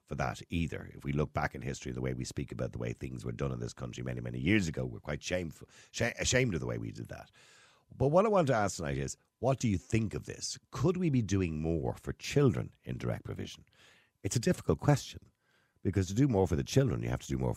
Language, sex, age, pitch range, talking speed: English, male, 50-69, 70-110 Hz, 260 wpm